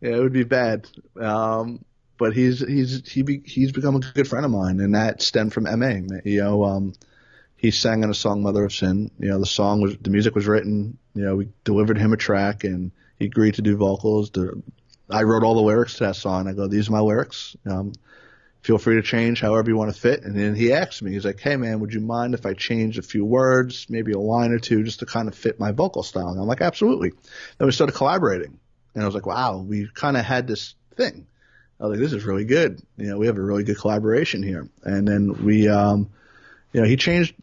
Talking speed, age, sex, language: 250 wpm, 30-49, male, English